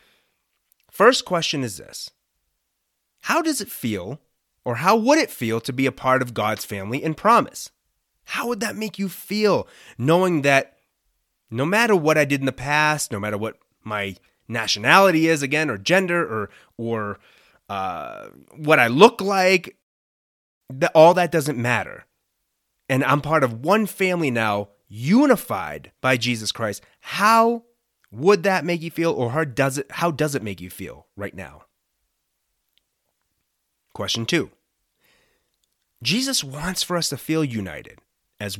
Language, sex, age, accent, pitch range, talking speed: English, male, 30-49, American, 115-180 Hz, 150 wpm